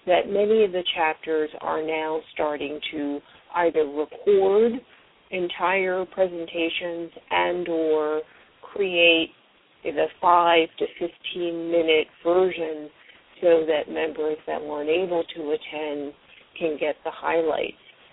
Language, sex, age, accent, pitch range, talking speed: English, female, 40-59, American, 155-180 Hz, 115 wpm